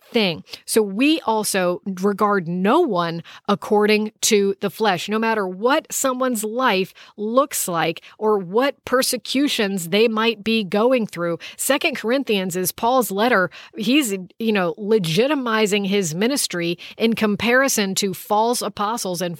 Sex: female